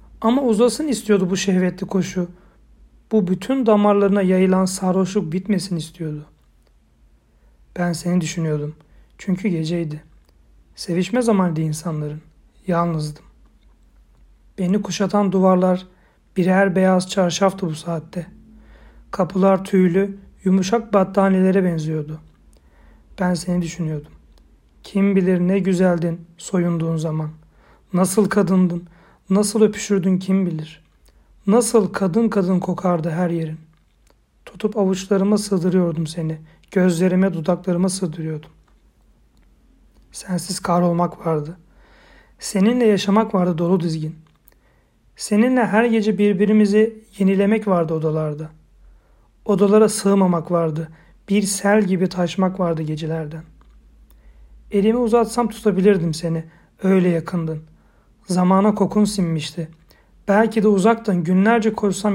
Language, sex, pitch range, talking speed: Turkish, male, 160-200 Hz, 100 wpm